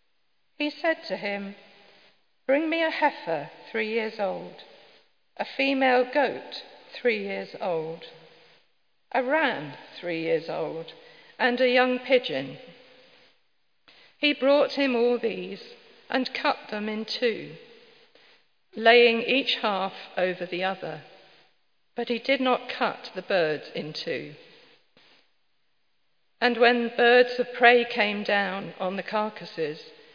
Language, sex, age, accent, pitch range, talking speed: English, female, 50-69, British, 185-255 Hz, 120 wpm